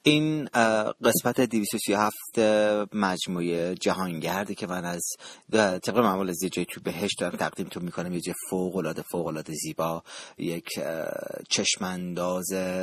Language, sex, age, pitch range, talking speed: Persian, male, 30-49, 85-105 Hz, 110 wpm